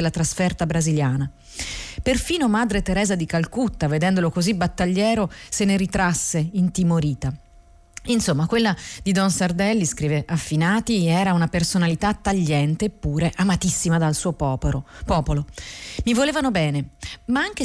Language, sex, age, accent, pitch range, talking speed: Italian, female, 30-49, native, 155-205 Hz, 125 wpm